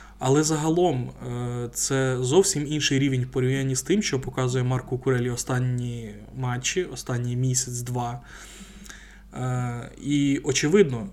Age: 20-39